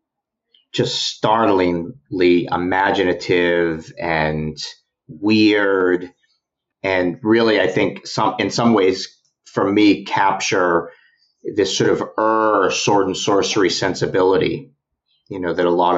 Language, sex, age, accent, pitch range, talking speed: English, male, 40-59, American, 90-110 Hz, 110 wpm